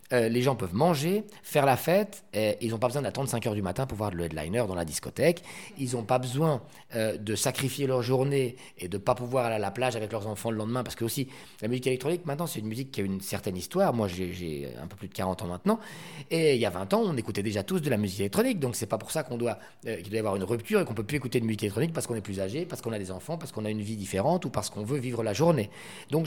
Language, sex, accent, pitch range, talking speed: French, male, French, 105-145 Hz, 305 wpm